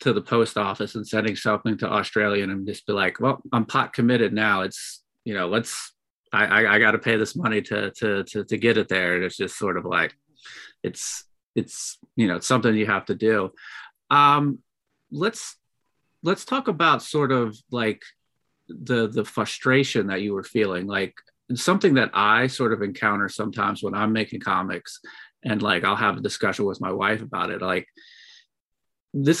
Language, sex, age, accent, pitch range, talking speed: English, male, 30-49, American, 105-135 Hz, 190 wpm